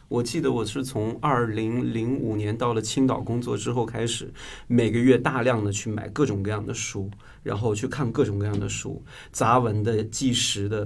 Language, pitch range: Chinese, 110-135 Hz